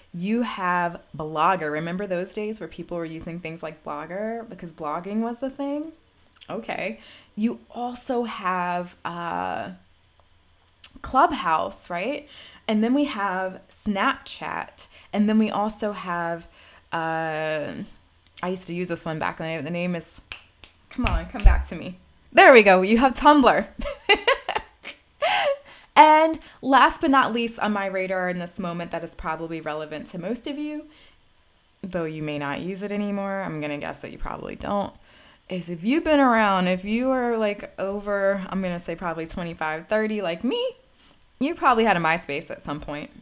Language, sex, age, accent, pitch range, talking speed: English, female, 20-39, American, 170-235 Hz, 165 wpm